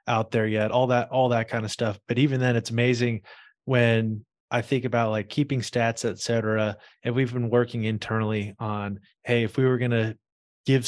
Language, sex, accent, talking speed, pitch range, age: English, male, American, 195 wpm, 110-130 Hz, 20-39